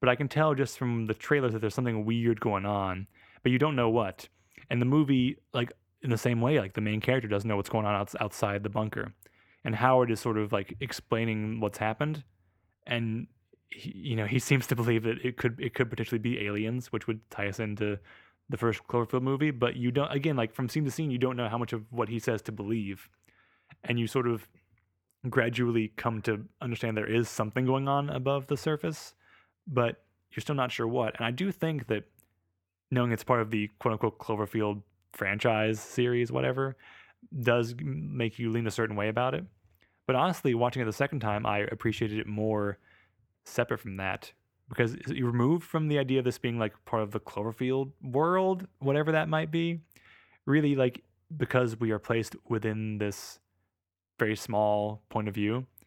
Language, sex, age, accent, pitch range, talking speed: English, male, 20-39, American, 105-130 Hz, 200 wpm